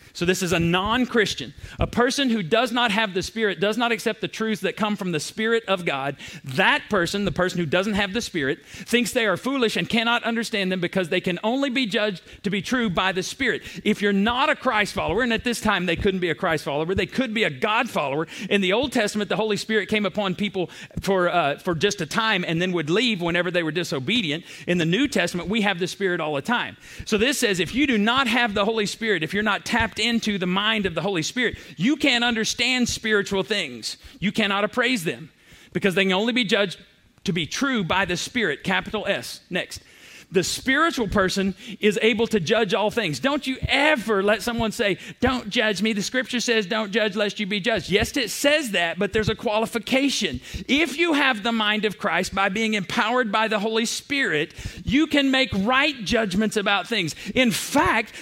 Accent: American